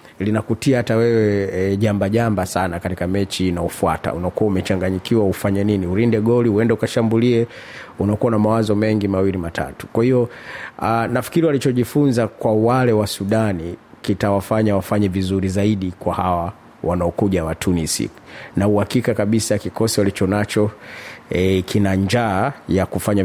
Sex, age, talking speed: male, 30-49, 135 wpm